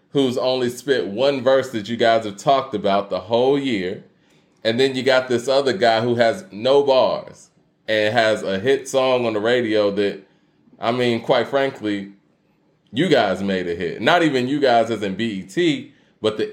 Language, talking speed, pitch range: English, 195 wpm, 105-135 Hz